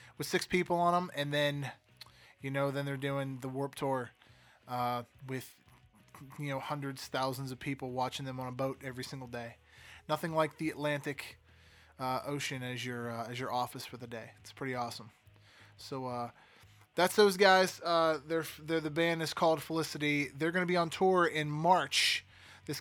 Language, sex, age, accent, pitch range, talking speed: English, male, 20-39, American, 130-160 Hz, 185 wpm